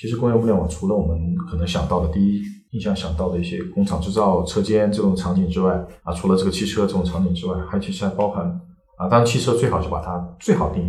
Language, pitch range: Chinese, 85-100 Hz